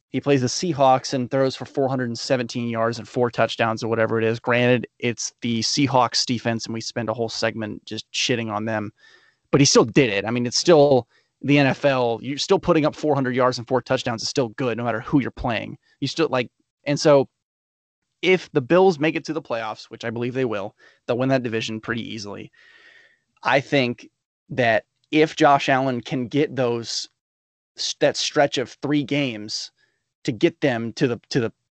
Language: English